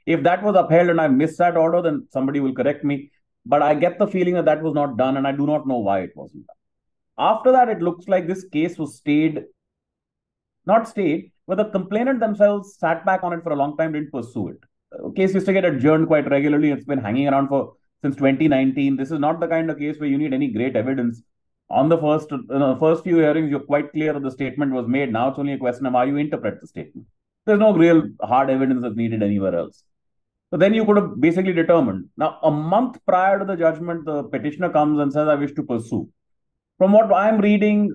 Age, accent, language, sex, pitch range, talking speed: 30-49, Indian, English, male, 140-190 Hz, 235 wpm